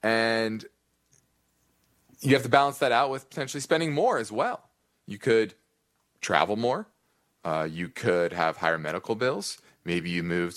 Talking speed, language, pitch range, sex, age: 155 wpm, English, 85-120 Hz, male, 30-49